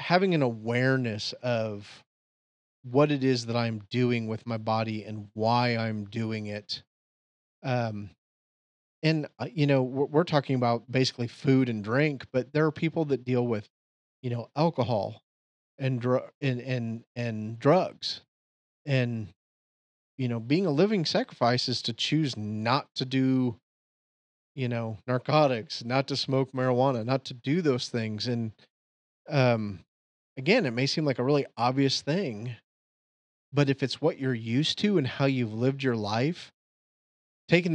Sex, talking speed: male, 155 wpm